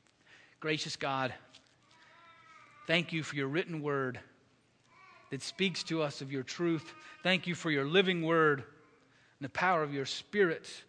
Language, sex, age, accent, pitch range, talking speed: English, male, 40-59, American, 125-185 Hz, 150 wpm